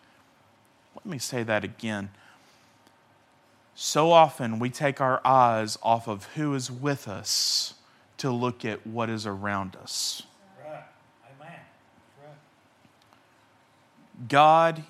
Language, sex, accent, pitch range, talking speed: English, male, American, 115-155 Hz, 100 wpm